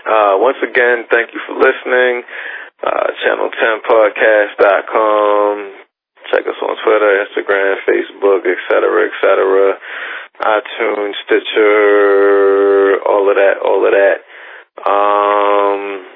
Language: English